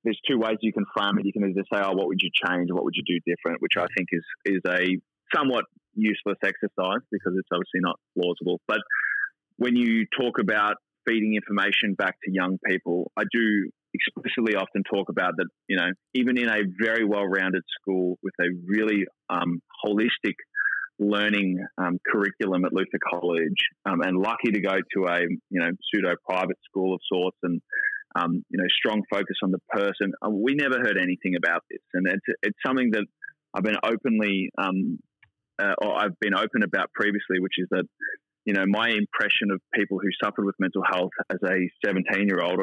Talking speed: 190 wpm